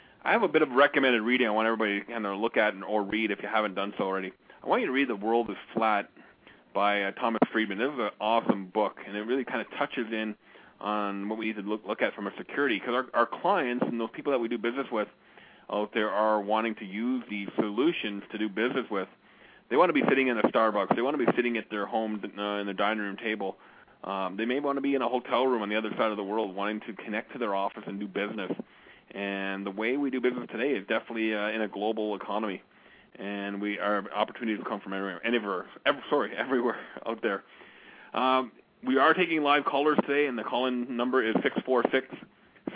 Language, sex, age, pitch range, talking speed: English, male, 30-49, 105-120 Hz, 245 wpm